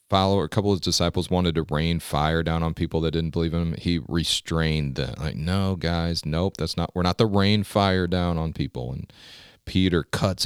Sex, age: male, 40-59